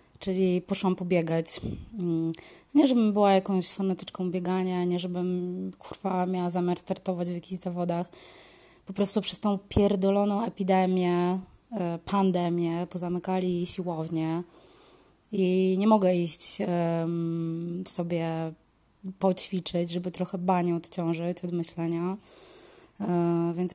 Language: Polish